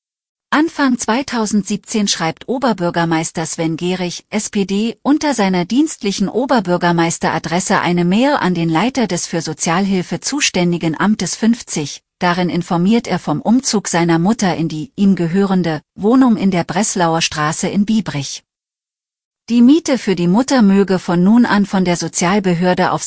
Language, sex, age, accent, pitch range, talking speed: German, female, 40-59, German, 170-215 Hz, 140 wpm